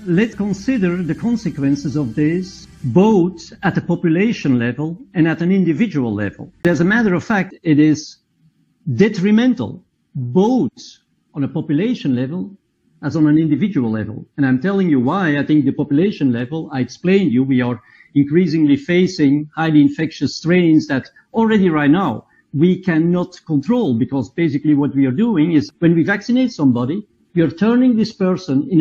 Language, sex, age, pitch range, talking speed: English, male, 50-69, 145-200 Hz, 160 wpm